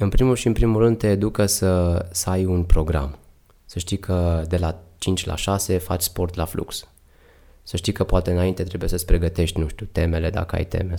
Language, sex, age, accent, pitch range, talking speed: Romanian, male, 20-39, native, 85-100 Hz, 215 wpm